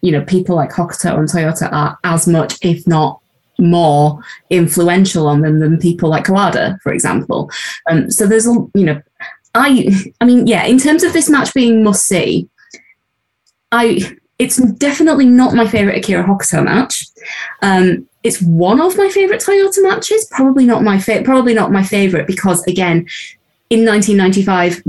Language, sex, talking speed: English, female, 165 wpm